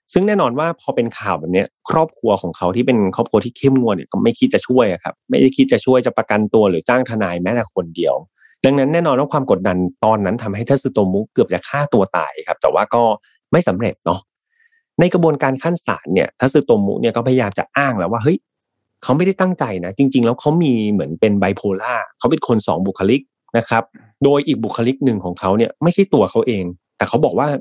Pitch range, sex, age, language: 105-150 Hz, male, 30-49, Thai